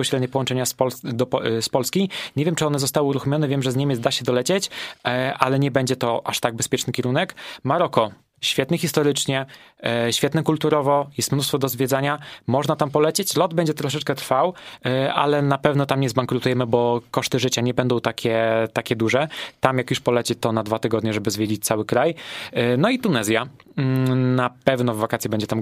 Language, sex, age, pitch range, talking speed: Polish, male, 20-39, 120-145 Hz, 180 wpm